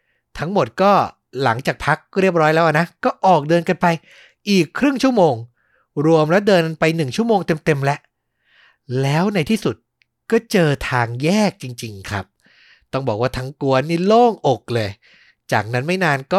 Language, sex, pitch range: Thai, male, 130-195 Hz